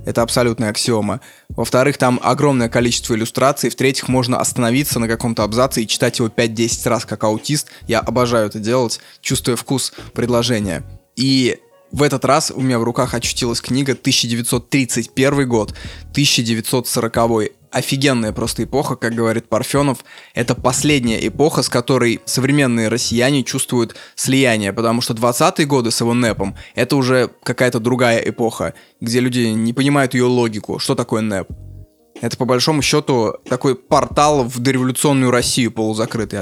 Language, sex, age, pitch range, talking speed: Russian, male, 20-39, 115-130 Hz, 145 wpm